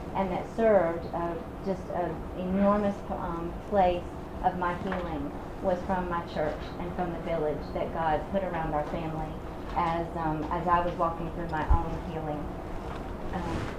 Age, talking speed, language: 30-49, 160 wpm, English